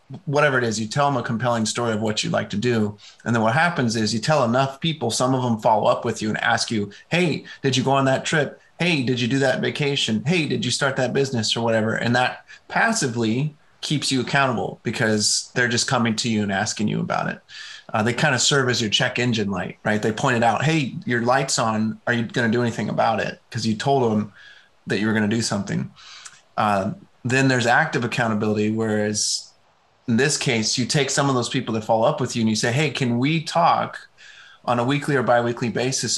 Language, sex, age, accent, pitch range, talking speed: English, male, 30-49, American, 115-135 Hz, 235 wpm